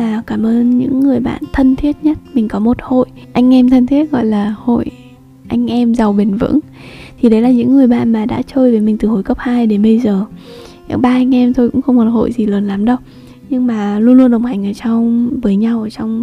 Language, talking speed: Vietnamese, 245 wpm